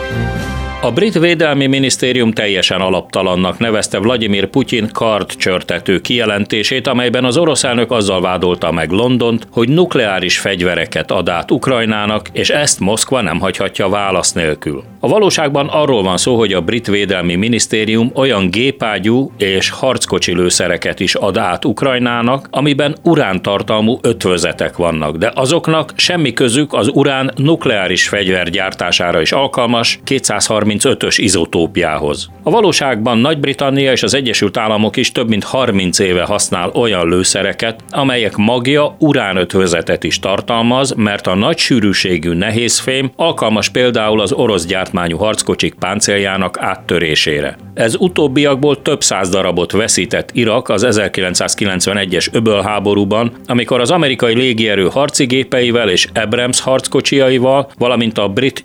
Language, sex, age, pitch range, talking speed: Hungarian, male, 40-59, 95-130 Hz, 125 wpm